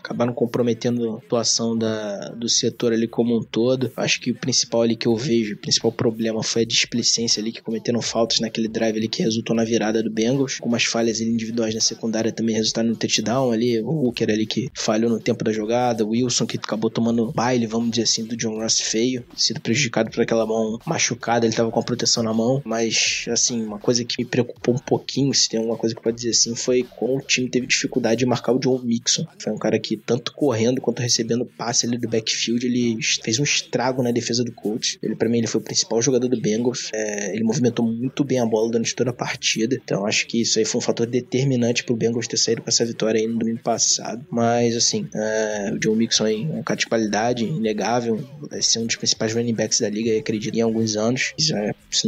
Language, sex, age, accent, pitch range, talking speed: Portuguese, male, 20-39, Brazilian, 115-125 Hz, 225 wpm